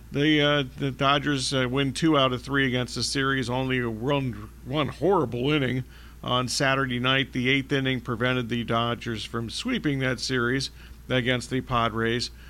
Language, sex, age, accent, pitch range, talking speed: English, male, 50-69, American, 120-150 Hz, 170 wpm